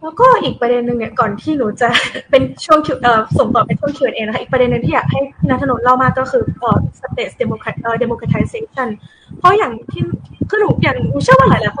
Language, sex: Thai, female